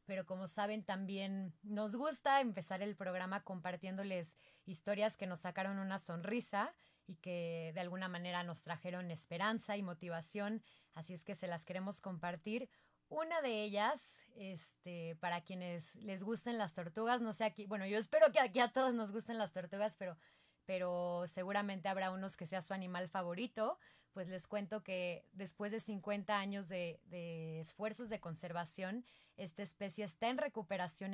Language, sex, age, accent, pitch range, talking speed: Spanish, female, 20-39, Mexican, 180-210 Hz, 160 wpm